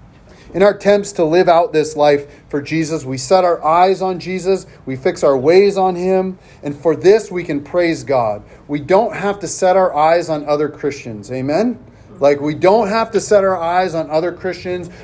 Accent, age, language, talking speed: American, 40-59, English, 205 wpm